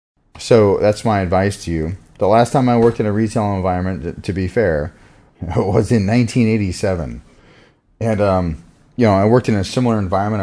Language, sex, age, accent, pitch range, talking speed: English, male, 30-49, American, 90-110 Hz, 180 wpm